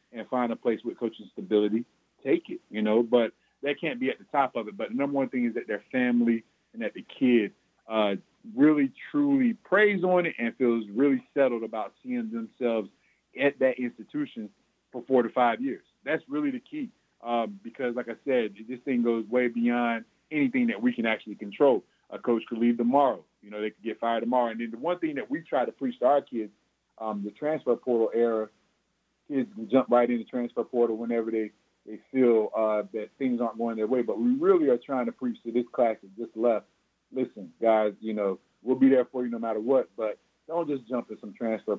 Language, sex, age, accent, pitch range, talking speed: English, male, 30-49, American, 110-135 Hz, 220 wpm